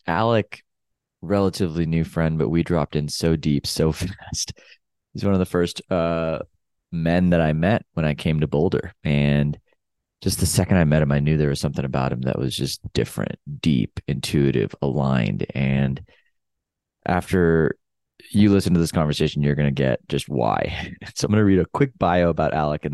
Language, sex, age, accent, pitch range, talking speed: English, male, 20-39, American, 75-90 Hz, 190 wpm